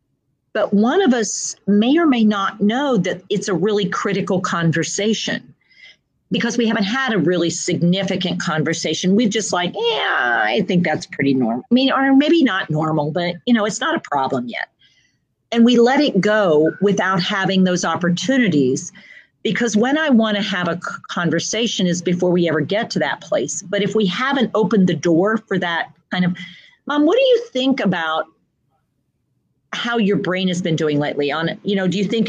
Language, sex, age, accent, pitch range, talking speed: English, female, 40-59, American, 175-220 Hz, 185 wpm